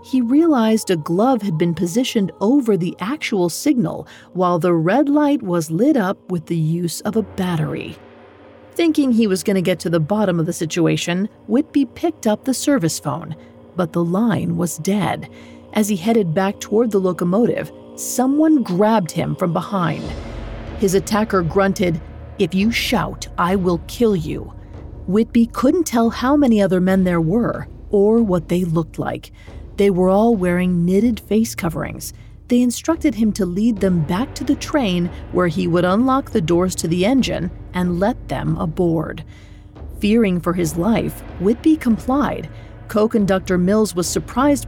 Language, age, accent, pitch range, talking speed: English, 40-59, American, 170-230 Hz, 165 wpm